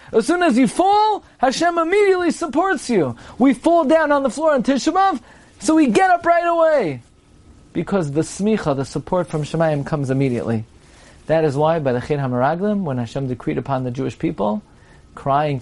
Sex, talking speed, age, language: male, 180 wpm, 30-49, English